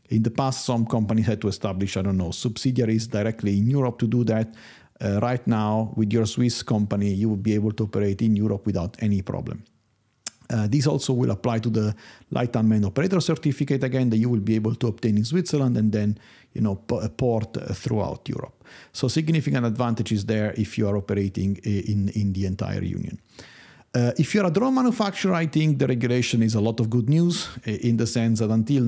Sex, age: male, 50-69